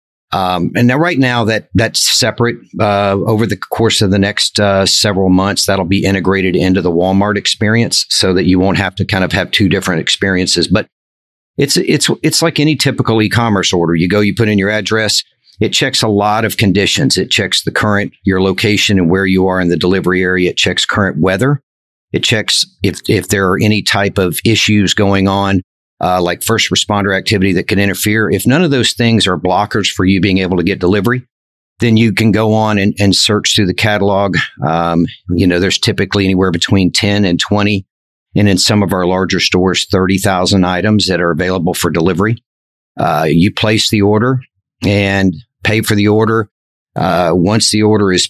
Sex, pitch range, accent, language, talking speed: male, 95-110 Hz, American, English, 200 wpm